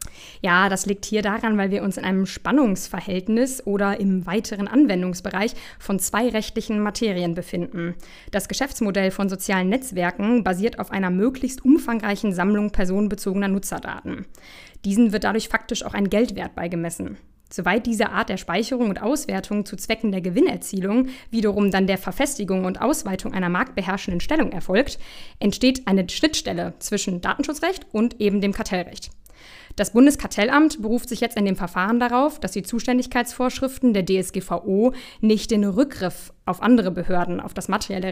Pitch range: 190-235 Hz